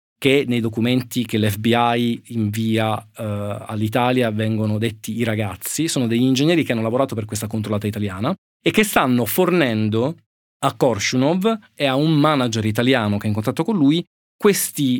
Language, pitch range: Italian, 110-140 Hz